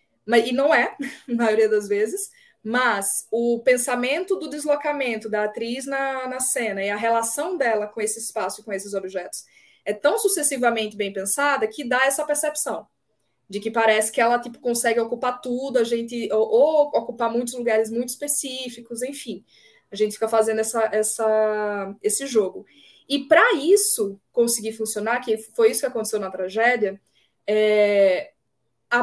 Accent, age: Brazilian, 20-39